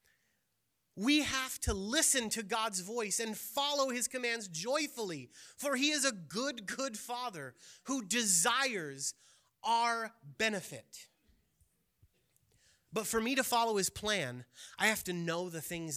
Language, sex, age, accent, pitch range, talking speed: English, male, 30-49, American, 145-230 Hz, 135 wpm